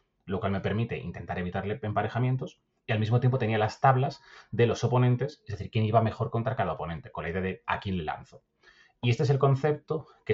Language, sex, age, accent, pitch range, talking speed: Spanish, male, 30-49, Spanish, 100-130 Hz, 225 wpm